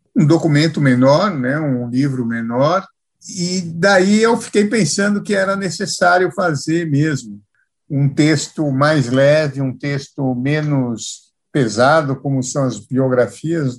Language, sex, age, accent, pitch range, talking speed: Portuguese, male, 60-79, Brazilian, 130-165 Hz, 125 wpm